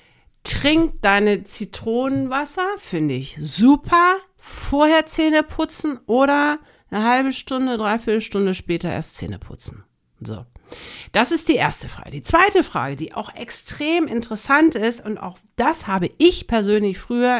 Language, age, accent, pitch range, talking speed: German, 50-69, German, 170-255 Hz, 140 wpm